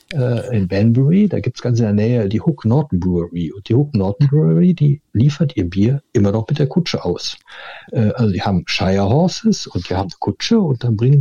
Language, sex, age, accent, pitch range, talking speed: German, male, 60-79, German, 105-140 Hz, 210 wpm